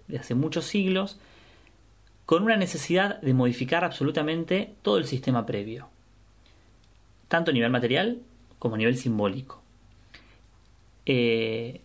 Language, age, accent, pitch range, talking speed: Spanish, 30-49, Argentinian, 110-160 Hz, 115 wpm